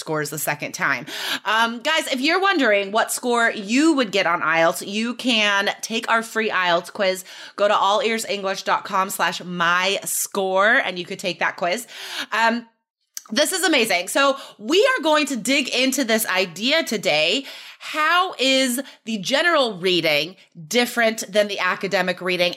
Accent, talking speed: American, 150 wpm